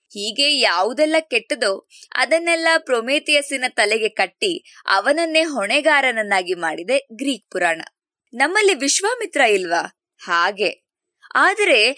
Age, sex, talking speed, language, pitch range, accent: 20-39, female, 85 wpm, Kannada, 215-330 Hz, native